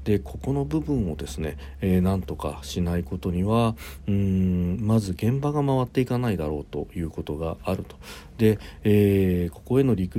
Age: 50-69